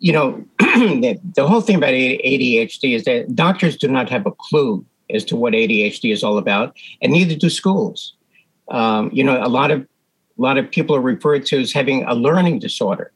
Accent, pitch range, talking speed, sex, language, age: American, 145-220 Hz, 205 wpm, male, English, 60-79